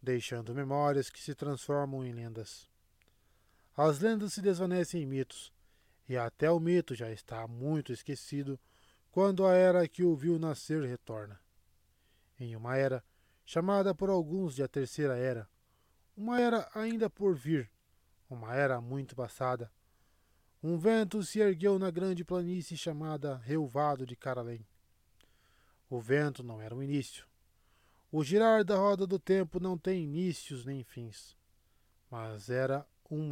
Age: 20-39